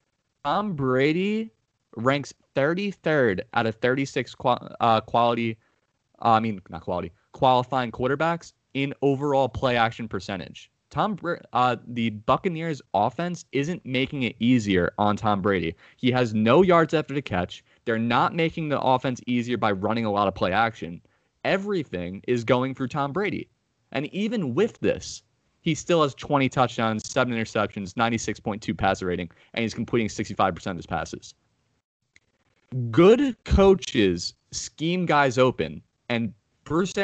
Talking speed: 145 wpm